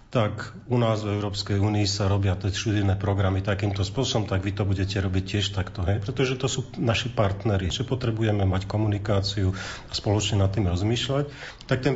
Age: 40-59